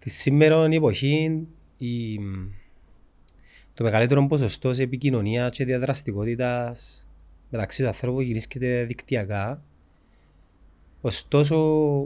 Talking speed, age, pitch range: 90 wpm, 30-49, 95-140 Hz